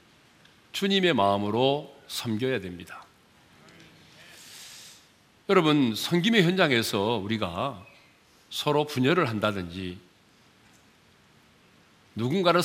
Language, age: Korean, 40-59